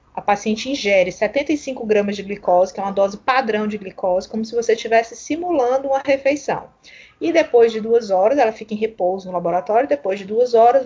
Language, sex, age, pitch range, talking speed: Portuguese, female, 20-39, 195-260 Hz, 205 wpm